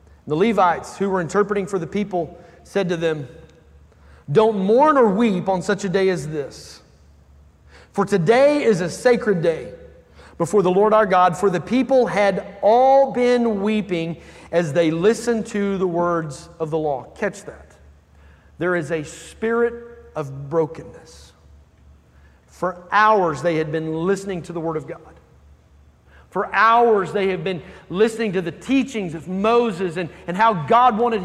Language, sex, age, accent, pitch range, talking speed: English, male, 40-59, American, 170-235 Hz, 160 wpm